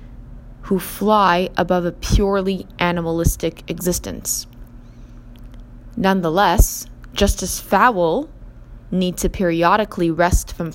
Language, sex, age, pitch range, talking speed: English, female, 20-39, 120-190 Hz, 90 wpm